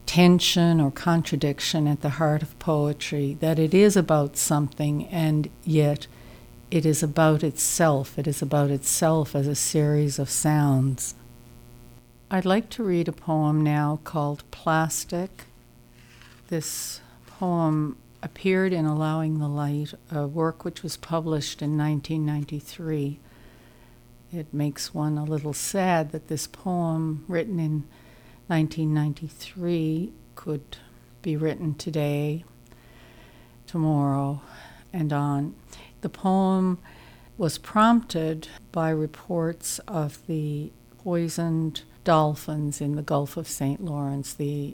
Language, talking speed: English, 115 wpm